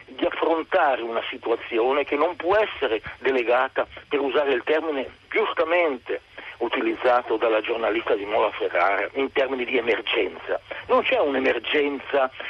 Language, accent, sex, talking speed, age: Italian, native, male, 130 wpm, 60-79